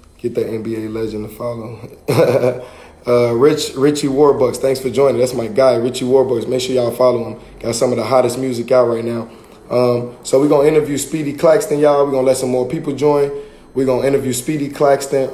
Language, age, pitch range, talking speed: English, 20-39, 120-140 Hz, 200 wpm